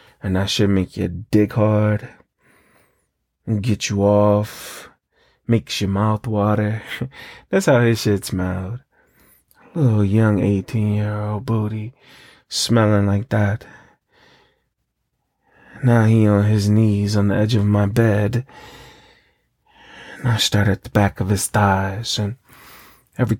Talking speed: 135 wpm